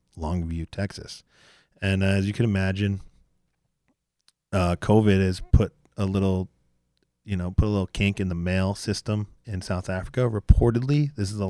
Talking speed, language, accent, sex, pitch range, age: 155 wpm, English, American, male, 80-105 Hz, 30-49